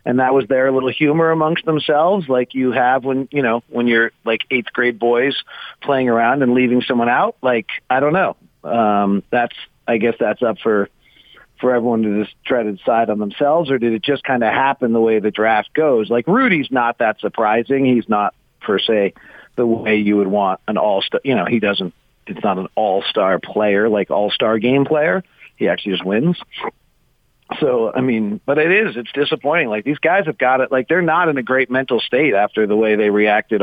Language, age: English, 40-59